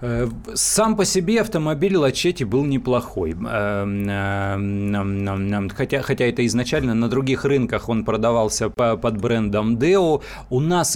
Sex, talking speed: male, 120 wpm